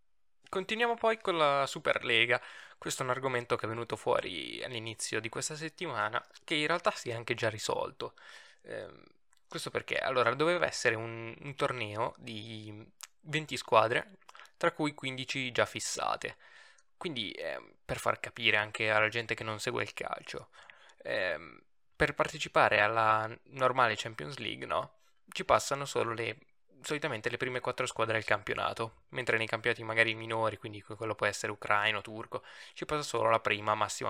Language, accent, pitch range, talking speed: Italian, native, 110-150 Hz, 160 wpm